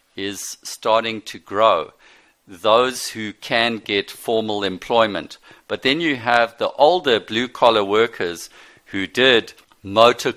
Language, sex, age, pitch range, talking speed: English, male, 50-69, 100-125 Hz, 120 wpm